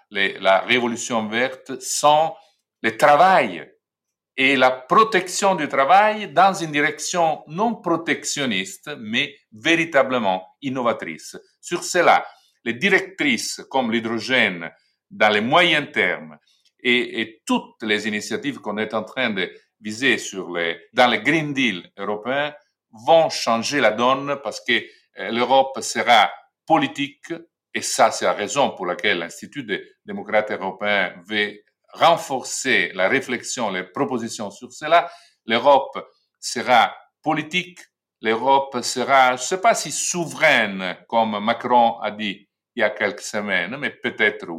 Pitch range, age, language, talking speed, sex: 110-160 Hz, 50-69, English, 130 wpm, male